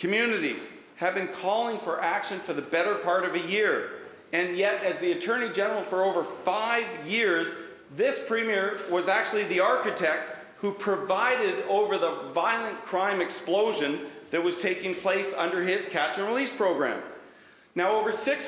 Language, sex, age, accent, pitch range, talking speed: English, male, 40-59, American, 170-225 Hz, 155 wpm